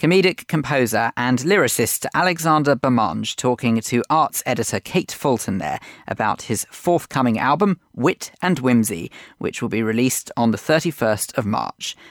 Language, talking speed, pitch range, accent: English, 145 wpm, 115-160 Hz, British